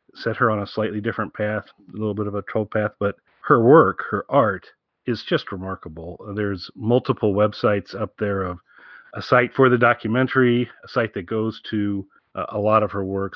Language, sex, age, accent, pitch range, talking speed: English, male, 40-59, American, 100-125 Hz, 195 wpm